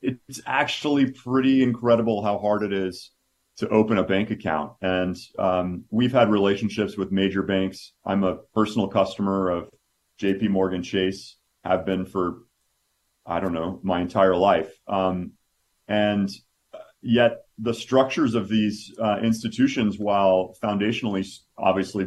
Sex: male